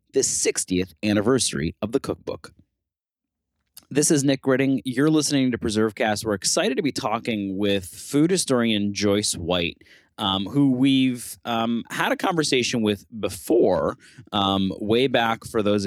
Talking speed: 145 wpm